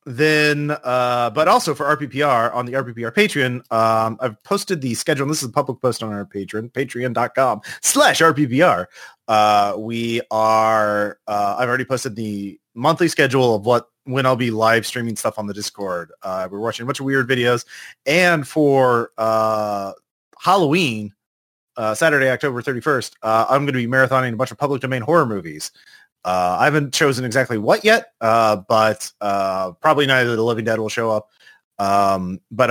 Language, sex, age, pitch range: English, male, 30-49, 110-135 Hz